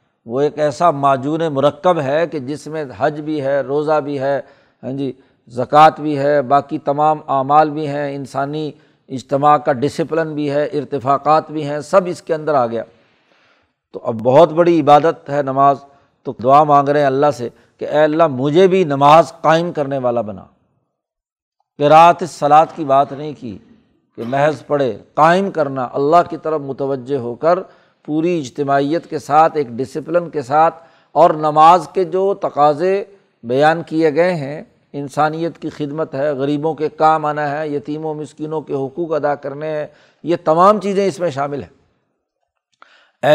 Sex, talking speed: male, 170 wpm